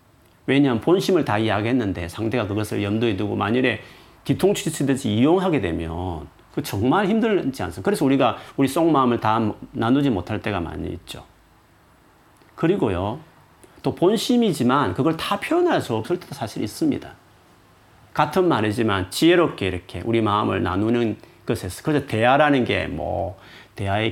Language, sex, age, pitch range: Korean, male, 40-59, 95-140 Hz